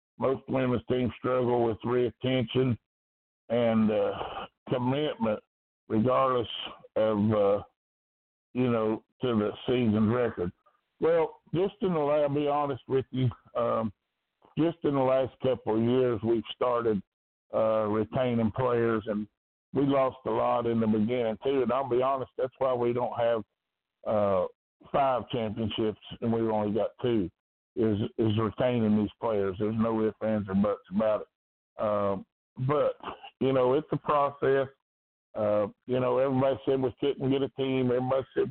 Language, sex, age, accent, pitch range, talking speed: English, male, 60-79, American, 110-130 Hz, 155 wpm